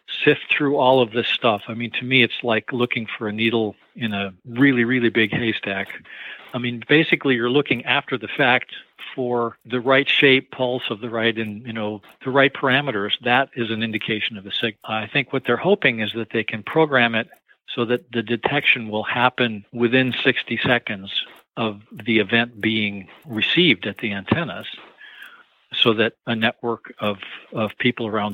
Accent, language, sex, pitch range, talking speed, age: American, English, male, 110-130 Hz, 185 wpm, 50-69